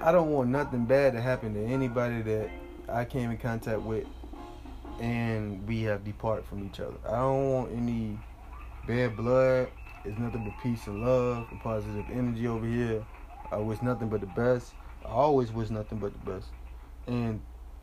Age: 20-39